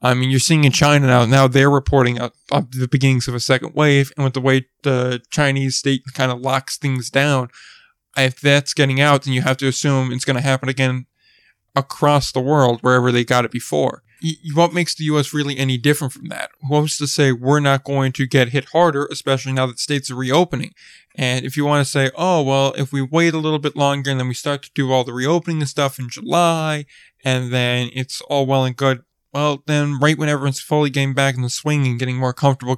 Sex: male